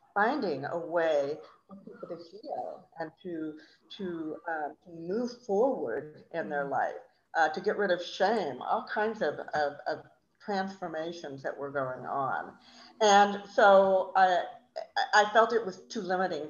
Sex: female